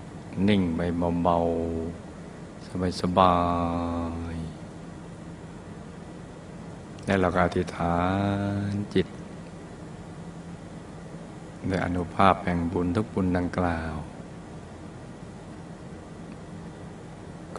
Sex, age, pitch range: male, 60-79, 85-95 Hz